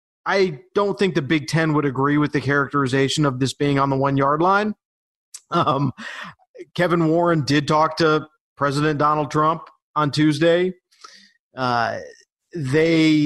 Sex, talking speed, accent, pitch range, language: male, 145 wpm, American, 140-170 Hz, English